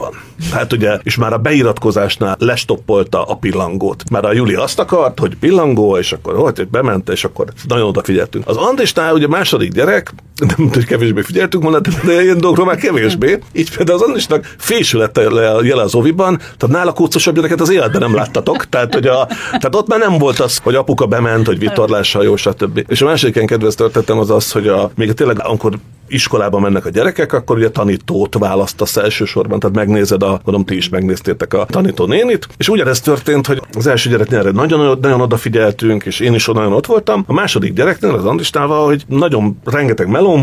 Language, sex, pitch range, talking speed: Hungarian, male, 105-150 Hz, 195 wpm